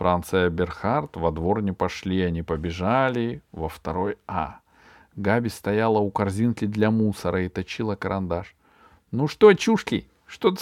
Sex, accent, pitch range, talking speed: male, native, 105-170 Hz, 140 wpm